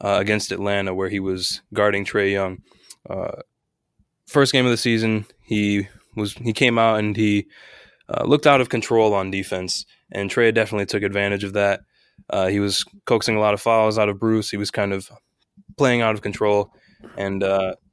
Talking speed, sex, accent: 185 wpm, male, American